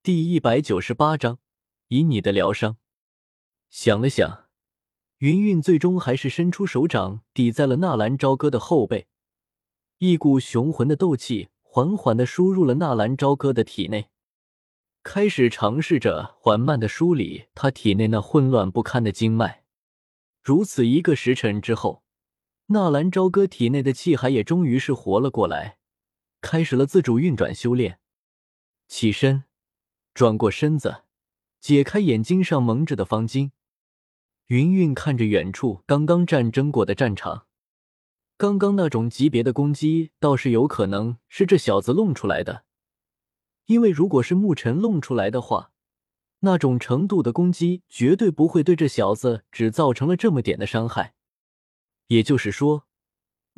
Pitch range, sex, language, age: 115-165 Hz, male, Chinese, 20-39